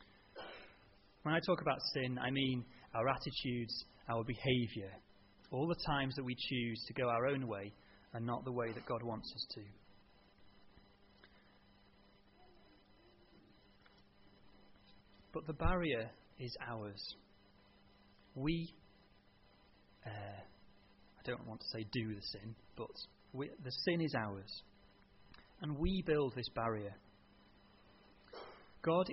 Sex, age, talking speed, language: male, 30-49, 115 wpm, English